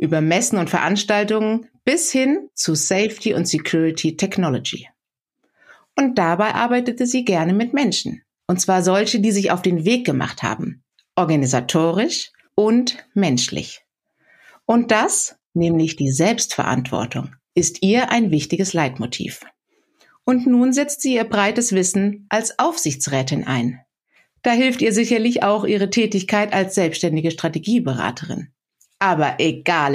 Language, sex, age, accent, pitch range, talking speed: German, female, 60-79, German, 160-245 Hz, 125 wpm